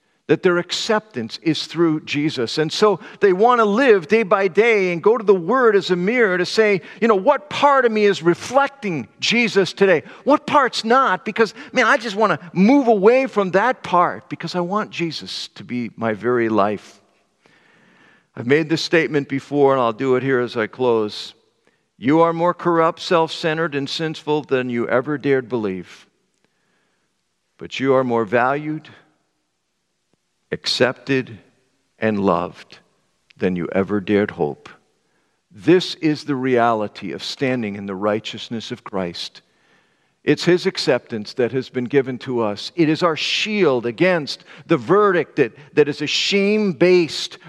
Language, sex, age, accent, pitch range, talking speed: English, male, 50-69, American, 120-190 Hz, 160 wpm